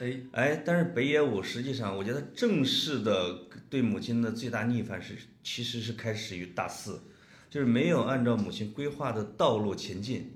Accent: native